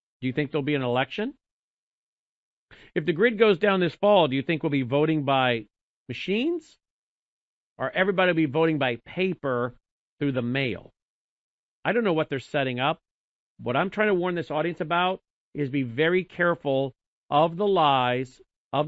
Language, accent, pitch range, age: English, American, 130-170 Hz, 50-69